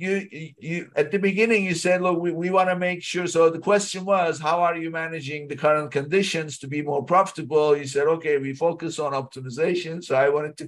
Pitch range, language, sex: 135-165 Hz, English, male